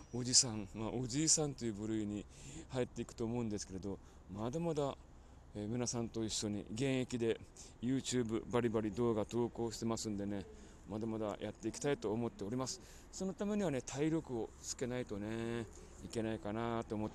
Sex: male